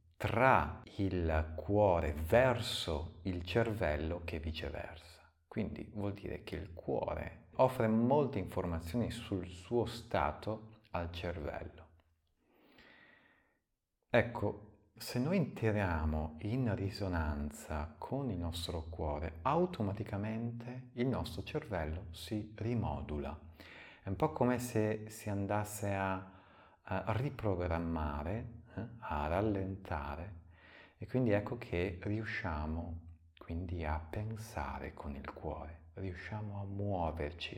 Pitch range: 80-110 Hz